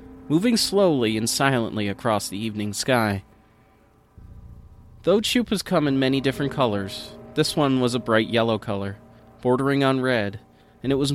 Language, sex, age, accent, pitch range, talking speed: English, male, 30-49, American, 110-150 Hz, 150 wpm